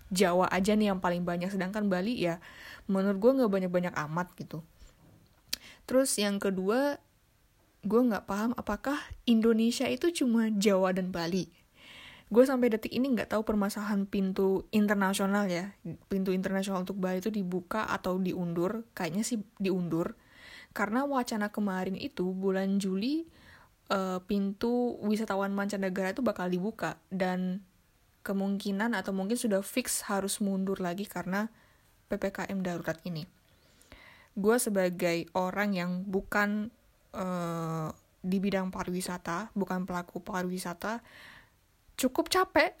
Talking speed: 125 wpm